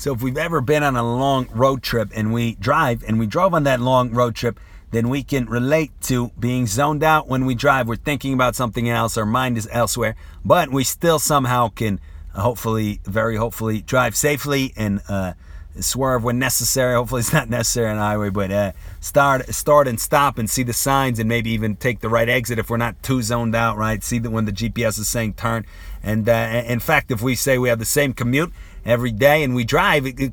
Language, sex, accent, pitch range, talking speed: English, male, American, 110-135 Hz, 225 wpm